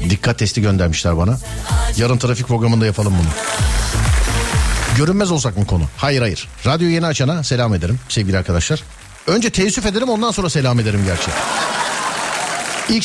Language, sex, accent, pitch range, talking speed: Turkish, male, native, 95-155 Hz, 145 wpm